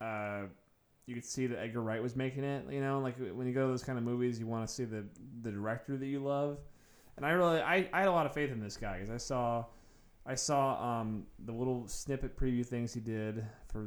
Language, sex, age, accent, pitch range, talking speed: English, male, 20-39, American, 110-145 Hz, 250 wpm